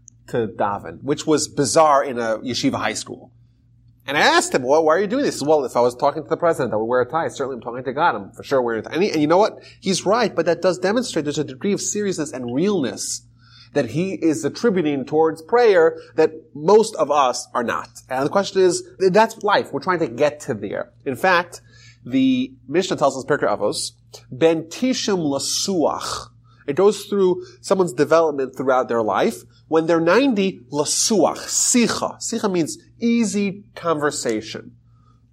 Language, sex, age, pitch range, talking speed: English, male, 30-49, 125-185 Hz, 190 wpm